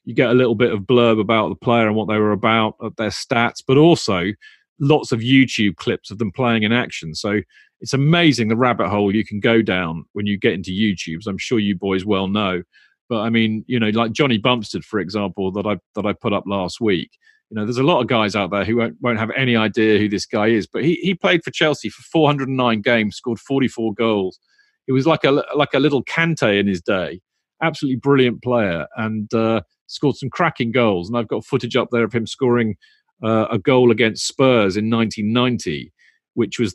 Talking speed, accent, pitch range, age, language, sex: 225 wpm, British, 105-125 Hz, 40-59, English, male